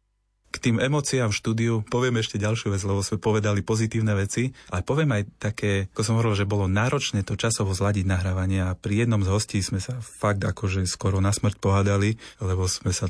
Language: Slovak